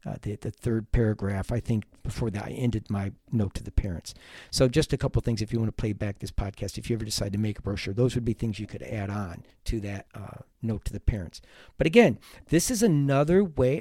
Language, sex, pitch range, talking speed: English, male, 105-135 Hz, 255 wpm